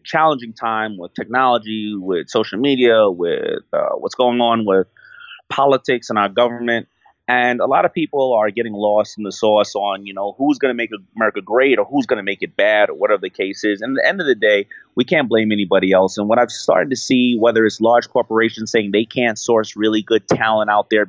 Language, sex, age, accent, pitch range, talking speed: English, male, 30-49, American, 105-130 Hz, 230 wpm